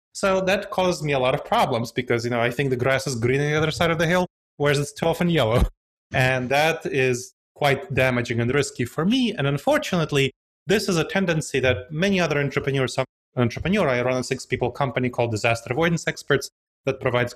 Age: 30-49